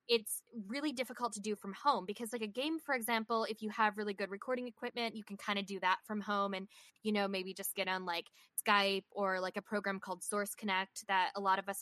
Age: 10-29